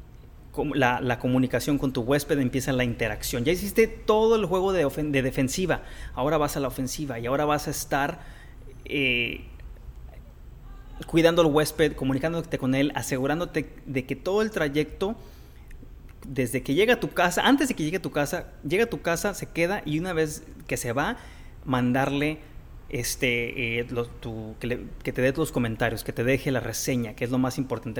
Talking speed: 190 wpm